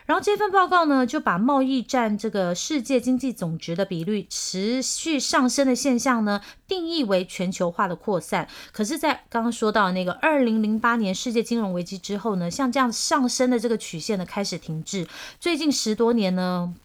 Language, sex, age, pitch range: Chinese, female, 30-49, 190-260 Hz